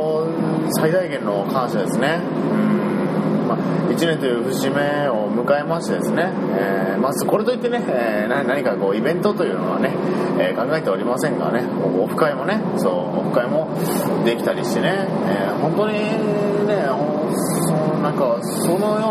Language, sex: Japanese, male